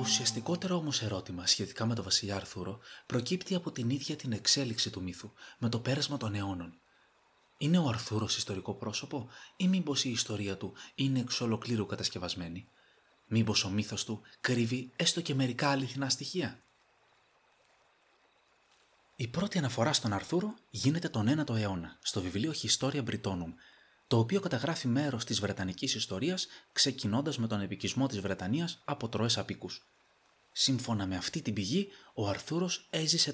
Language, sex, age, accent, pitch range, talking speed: Greek, male, 30-49, native, 105-145 Hz, 165 wpm